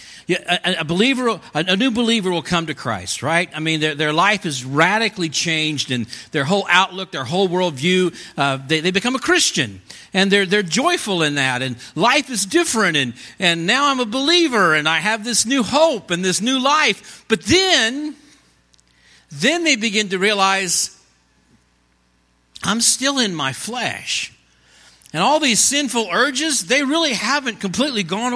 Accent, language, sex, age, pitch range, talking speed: American, English, male, 50-69, 155-230 Hz, 165 wpm